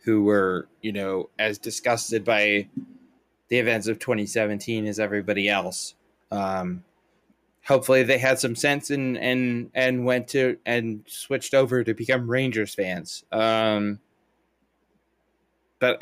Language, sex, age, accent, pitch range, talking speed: English, male, 20-39, American, 105-130 Hz, 125 wpm